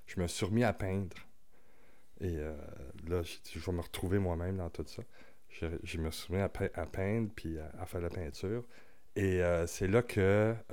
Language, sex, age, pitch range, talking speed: French, male, 30-49, 80-95 Hz, 220 wpm